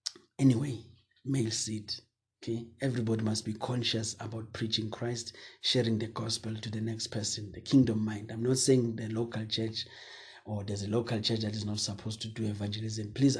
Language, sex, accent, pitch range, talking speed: English, male, South African, 110-120 Hz, 180 wpm